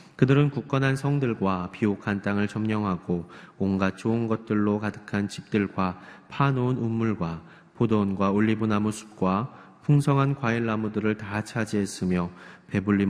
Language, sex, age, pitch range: Korean, male, 30-49, 95-115 Hz